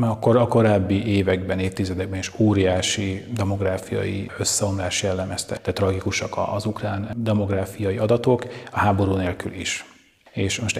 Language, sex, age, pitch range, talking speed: Hungarian, male, 30-49, 95-110 Hz, 120 wpm